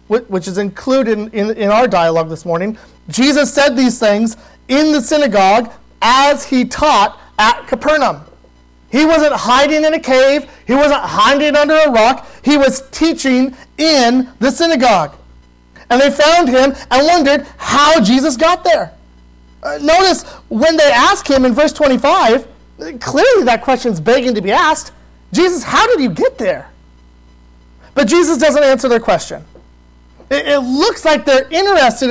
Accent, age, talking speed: American, 30-49, 150 wpm